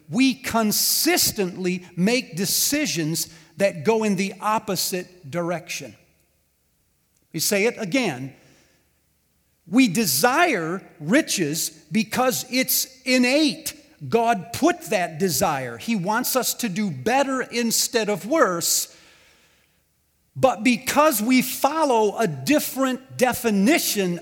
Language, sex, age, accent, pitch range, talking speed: English, male, 50-69, American, 170-265 Hz, 100 wpm